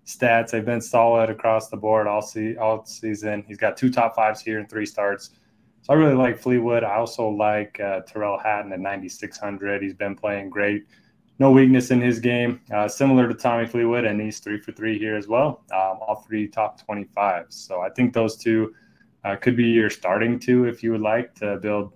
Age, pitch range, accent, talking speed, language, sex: 20-39, 105-120 Hz, American, 210 wpm, English, male